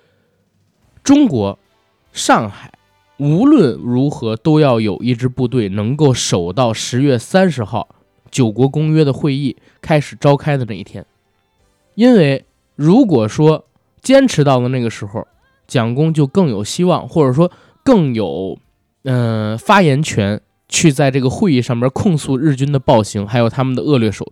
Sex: male